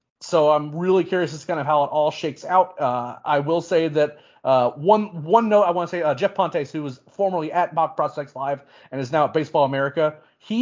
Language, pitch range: English, 135-170 Hz